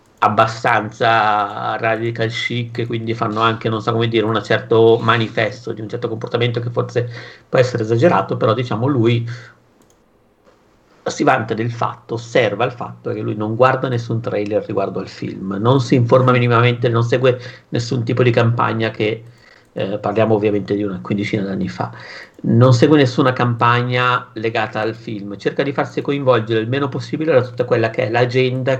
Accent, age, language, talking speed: native, 50-69, Italian, 165 wpm